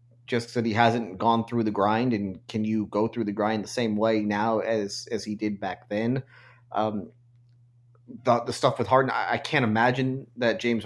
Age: 30-49